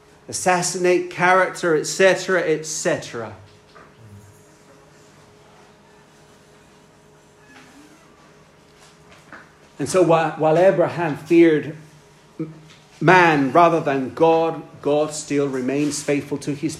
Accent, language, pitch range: British, English, 145-190 Hz